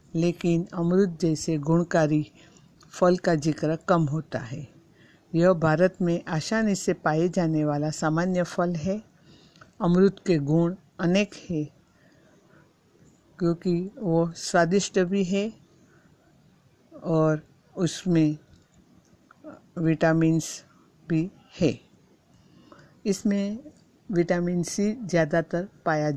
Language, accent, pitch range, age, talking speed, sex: Hindi, native, 155-185 Hz, 60-79, 95 wpm, female